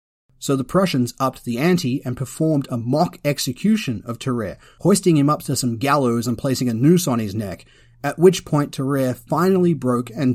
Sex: male